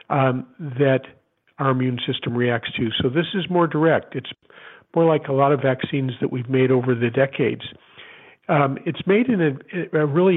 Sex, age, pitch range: male, 50-69, 130-160 Hz